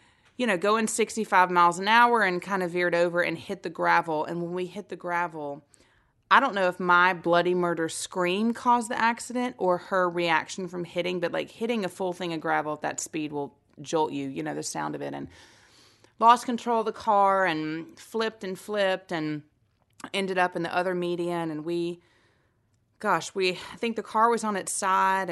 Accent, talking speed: American, 205 wpm